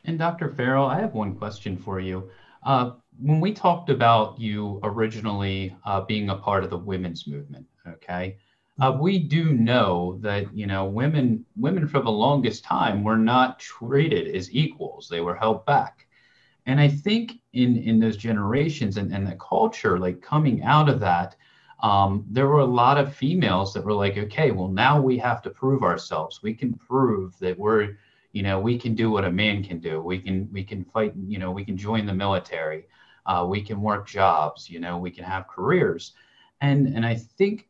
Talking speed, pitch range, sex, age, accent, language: 195 wpm, 100-135 Hz, male, 30-49, American, English